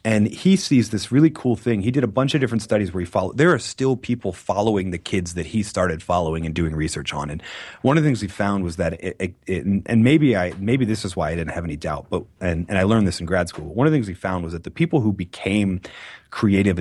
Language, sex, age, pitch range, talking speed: English, male, 30-49, 90-120 Hz, 270 wpm